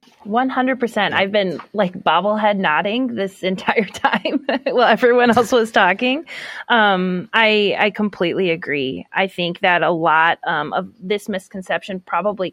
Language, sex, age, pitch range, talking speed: English, female, 30-49, 180-230 Hz, 150 wpm